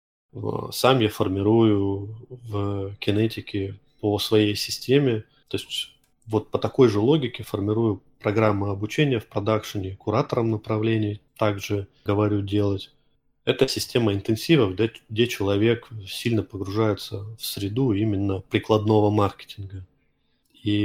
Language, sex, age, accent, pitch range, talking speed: Russian, male, 20-39, native, 100-115 Hz, 110 wpm